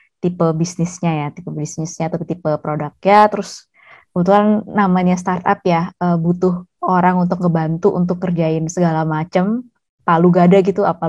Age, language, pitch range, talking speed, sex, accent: 20-39, Indonesian, 170-200 Hz, 140 wpm, female, native